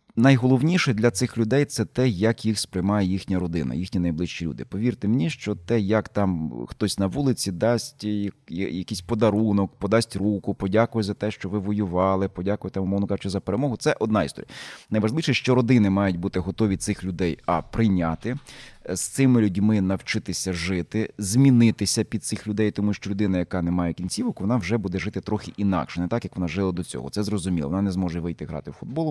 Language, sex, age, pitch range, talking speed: Ukrainian, male, 30-49, 95-115 Hz, 190 wpm